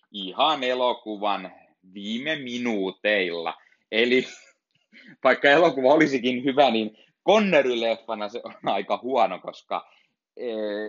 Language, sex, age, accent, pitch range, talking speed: Finnish, male, 30-49, native, 95-125 Hz, 95 wpm